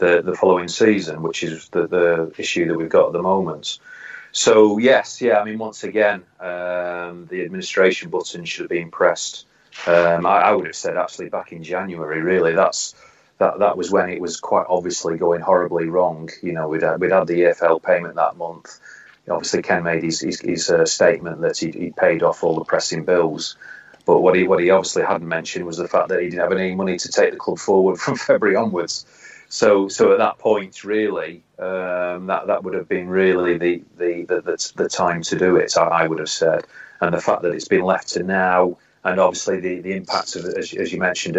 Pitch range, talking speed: 85-95 Hz, 215 wpm